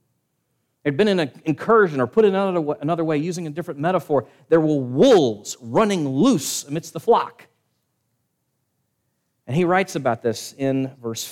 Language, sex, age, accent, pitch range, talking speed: English, male, 40-59, American, 135-195 Hz, 155 wpm